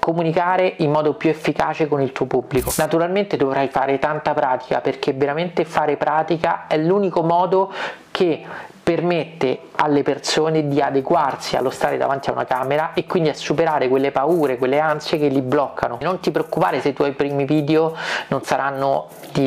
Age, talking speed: 30-49, 170 wpm